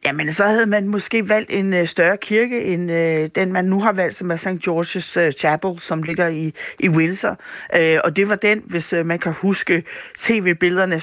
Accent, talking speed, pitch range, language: native, 210 wpm, 160-190 Hz, Danish